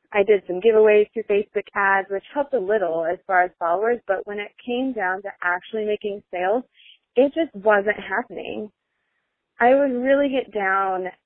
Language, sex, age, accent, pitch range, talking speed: English, female, 20-39, American, 185-230 Hz, 175 wpm